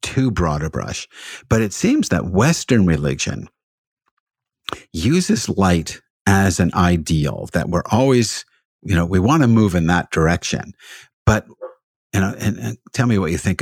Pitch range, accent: 90-120 Hz, American